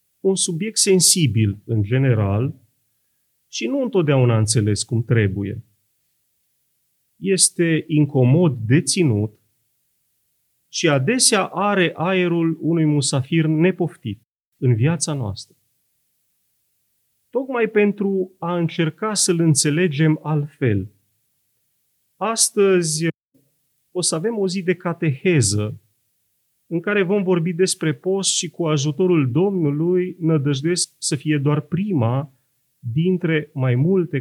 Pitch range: 125-175 Hz